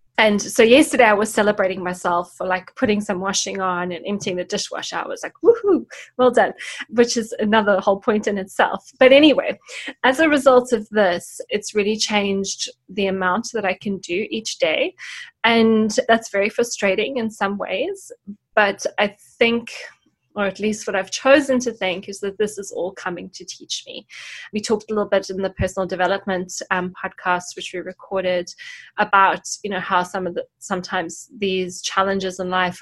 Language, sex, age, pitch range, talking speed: English, female, 20-39, 190-235 Hz, 185 wpm